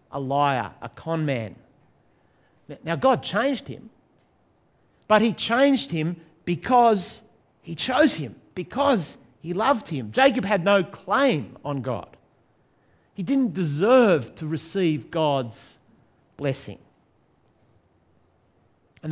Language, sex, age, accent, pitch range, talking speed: English, male, 50-69, Australian, 125-205 Hz, 110 wpm